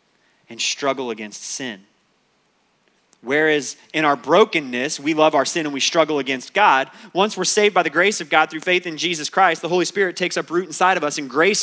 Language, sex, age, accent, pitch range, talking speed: English, male, 30-49, American, 130-180 Hz, 210 wpm